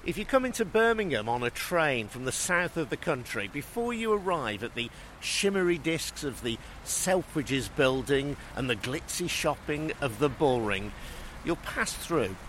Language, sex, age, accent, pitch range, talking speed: English, male, 50-69, British, 110-150 Hz, 170 wpm